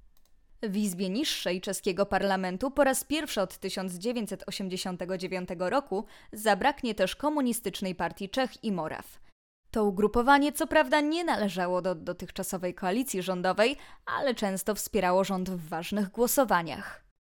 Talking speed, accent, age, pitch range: 120 wpm, native, 20-39, 185-240 Hz